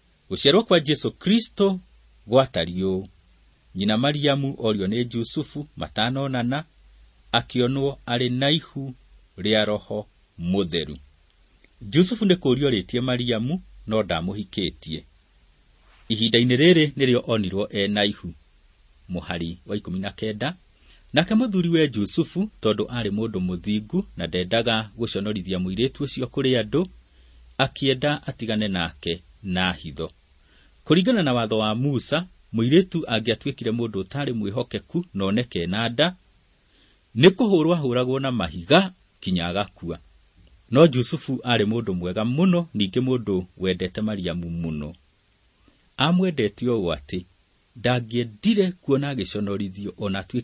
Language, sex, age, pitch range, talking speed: English, male, 40-59, 95-135 Hz, 110 wpm